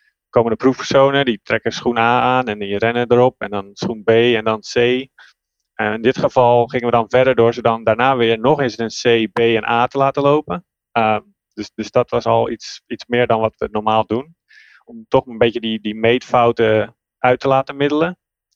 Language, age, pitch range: Dutch, 30-49, 110-125 Hz